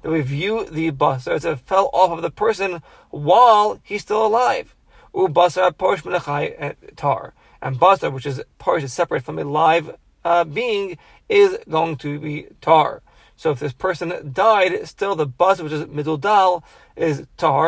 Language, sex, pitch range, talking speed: English, male, 145-190 Hz, 165 wpm